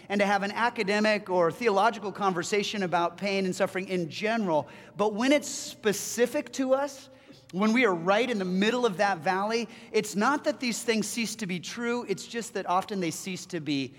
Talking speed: 200 wpm